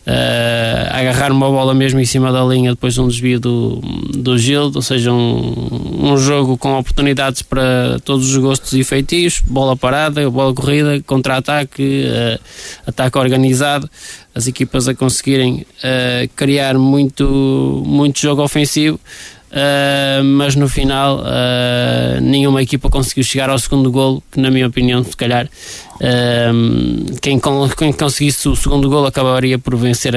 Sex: male